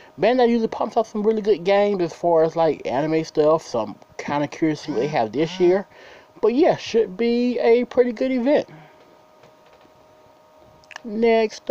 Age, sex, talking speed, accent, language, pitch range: 20-39, male, 175 wpm, American, English, 155-225 Hz